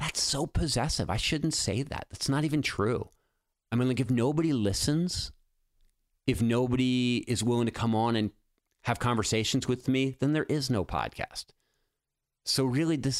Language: English